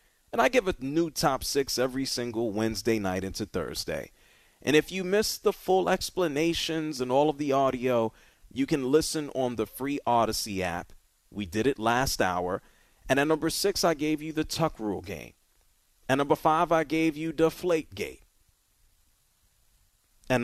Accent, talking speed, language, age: American, 170 wpm, English, 40-59